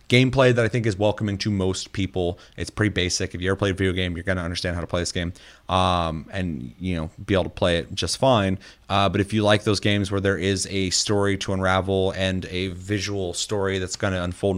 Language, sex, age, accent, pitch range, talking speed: English, male, 30-49, American, 85-100 Hz, 245 wpm